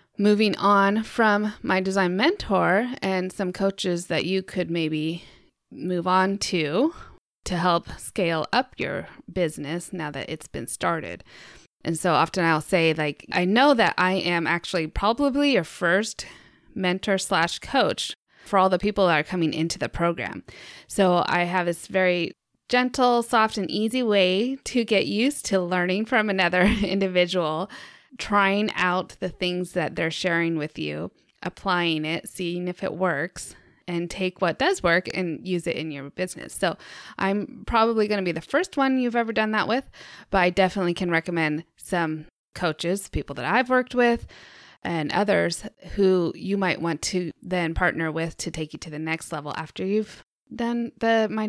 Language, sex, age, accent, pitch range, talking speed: English, female, 20-39, American, 170-210 Hz, 170 wpm